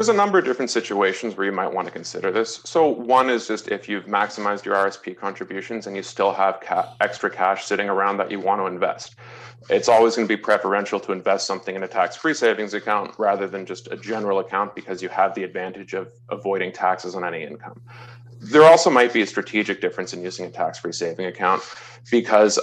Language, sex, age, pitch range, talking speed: English, male, 30-49, 100-120 Hz, 215 wpm